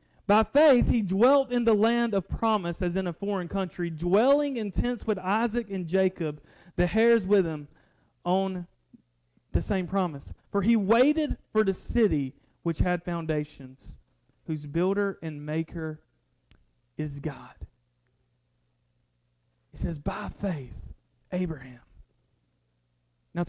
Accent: American